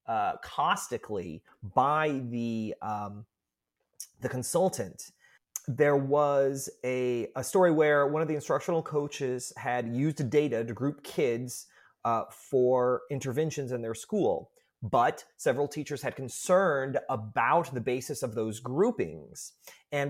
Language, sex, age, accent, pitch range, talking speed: English, male, 30-49, American, 130-165 Hz, 125 wpm